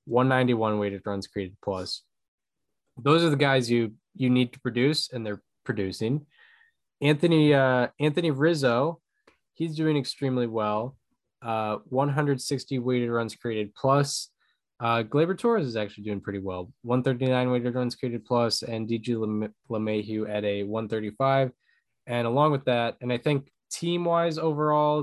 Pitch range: 110-140 Hz